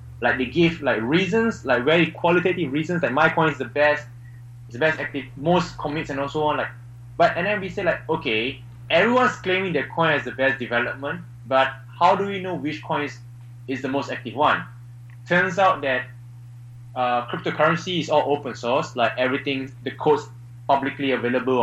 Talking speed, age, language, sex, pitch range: 190 wpm, 20-39, English, male, 120-160 Hz